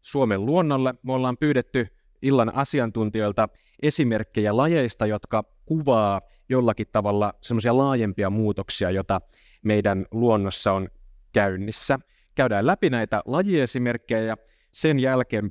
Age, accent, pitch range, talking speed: 30-49, native, 105-130 Hz, 105 wpm